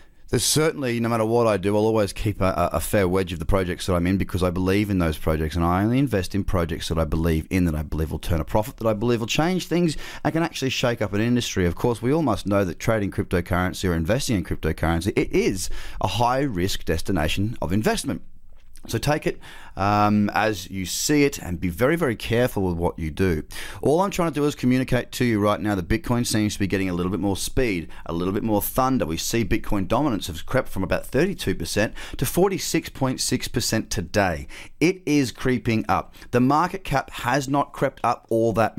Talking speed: 225 wpm